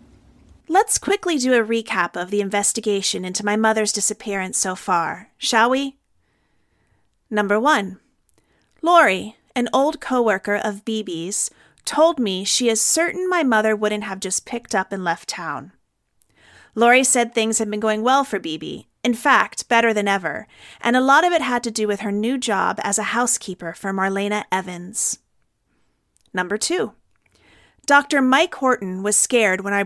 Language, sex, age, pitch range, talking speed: English, female, 30-49, 195-245 Hz, 160 wpm